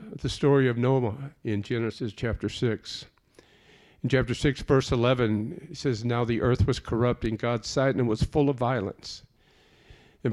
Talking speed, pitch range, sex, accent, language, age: 175 wpm, 110-135 Hz, male, American, English, 50-69